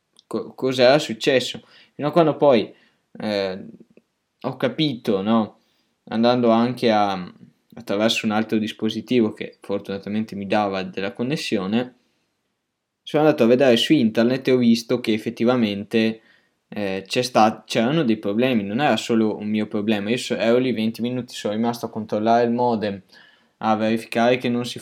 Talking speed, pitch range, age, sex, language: 155 wpm, 105-115 Hz, 10-29, male, Italian